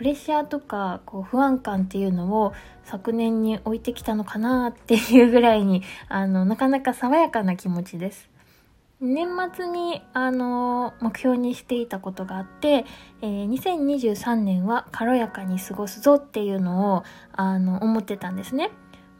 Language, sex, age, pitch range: Japanese, female, 20-39, 205-280 Hz